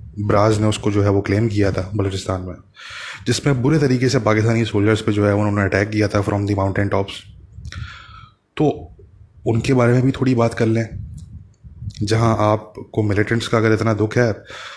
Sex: male